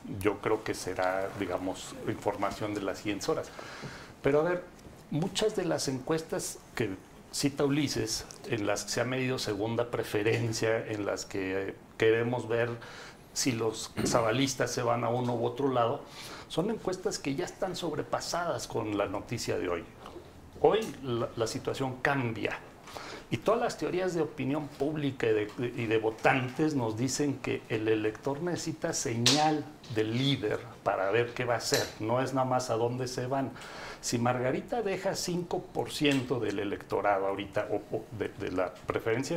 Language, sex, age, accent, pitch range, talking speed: Spanish, male, 60-79, Mexican, 115-155 Hz, 165 wpm